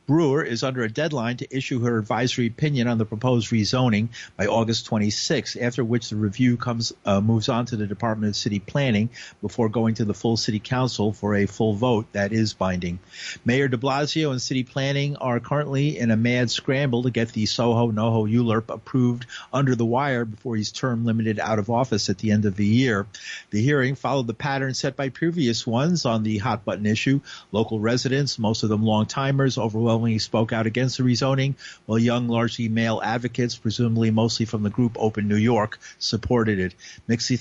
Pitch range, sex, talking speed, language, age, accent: 110-135 Hz, male, 200 wpm, English, 50-69, American